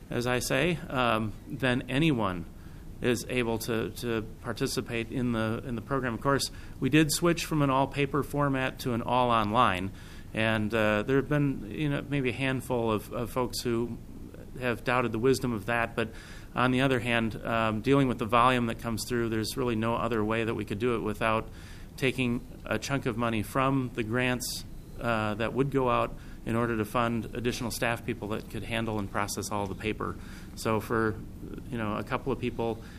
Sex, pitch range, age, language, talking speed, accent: male, 105-125 Hz, 30-49, English, 195 wpm, American